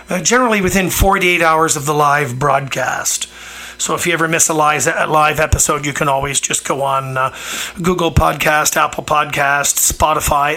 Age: 40-59